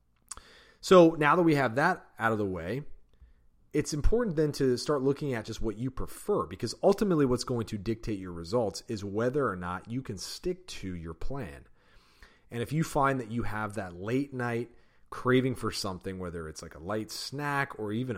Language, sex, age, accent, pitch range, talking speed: English, male, 30-49, American, 100-135 Hz, 200 wpm